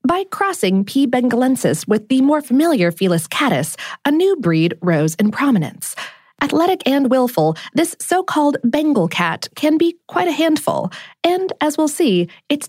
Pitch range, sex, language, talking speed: 190-310 Hz, female, English, 155 wpm